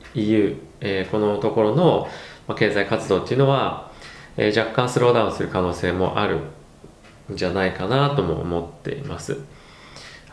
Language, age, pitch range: Japanese, 20-39, 95-120 Hz